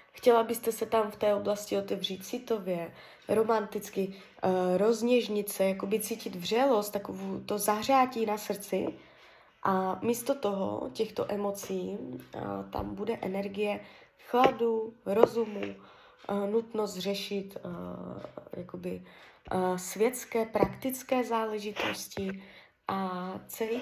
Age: 20-39